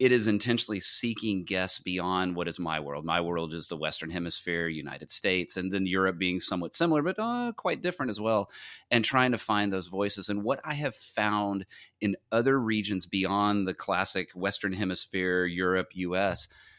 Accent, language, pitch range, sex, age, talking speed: American, English, 90-110 Hz, male, 30-49, 180 wpm